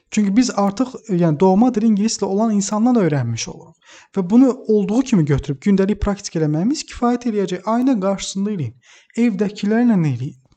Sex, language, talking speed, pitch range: male, English, 140 wpm, 150-195 Hz